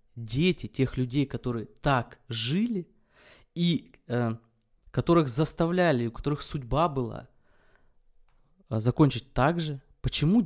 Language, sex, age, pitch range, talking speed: Russian, male, 20-39, 115-155 Hz, 110 wpm